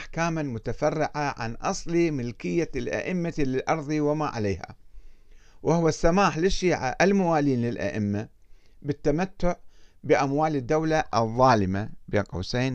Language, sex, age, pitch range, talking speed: Arabic, male, 50-69, 105-160 Hz, 90 wpm